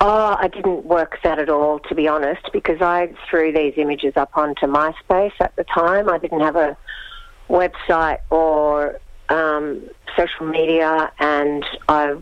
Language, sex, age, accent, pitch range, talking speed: English, female, 50-69, Australian, 145-175 Hz, 155 wpm